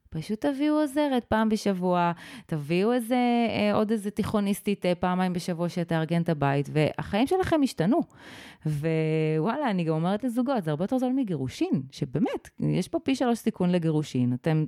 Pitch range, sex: 150-220 Hz, female